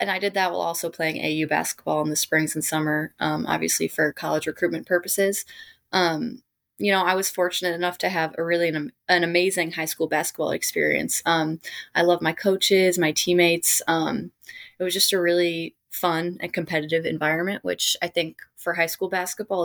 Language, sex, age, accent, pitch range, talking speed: English, female, 20-39, American, 160-185 Hz, 190 wpm